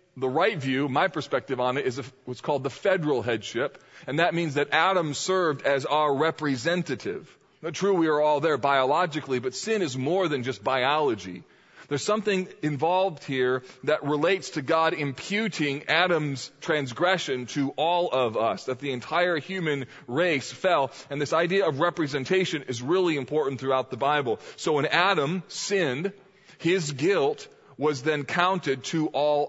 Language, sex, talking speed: English, male, 160 wpm